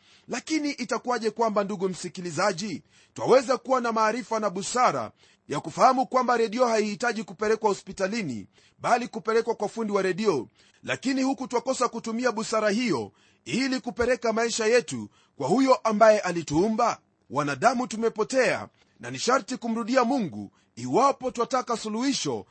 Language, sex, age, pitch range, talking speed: Swahili, male, 30-49, 215-255 Hz, 130 wpm